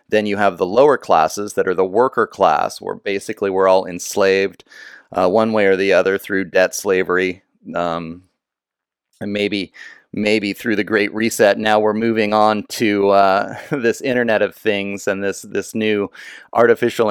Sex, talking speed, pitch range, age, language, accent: male, 170 wpm, 95-115 Hz, 30-49, English, American